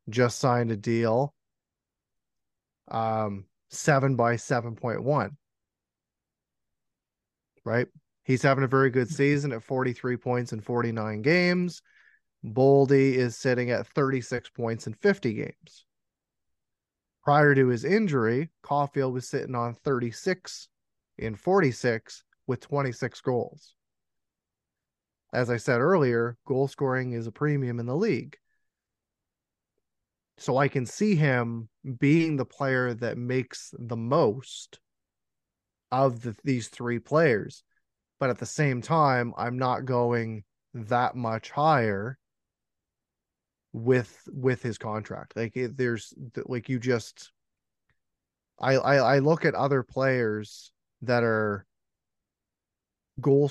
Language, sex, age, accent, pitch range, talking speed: English, male, 30-49, American, 120-140 Hz, 115 wpm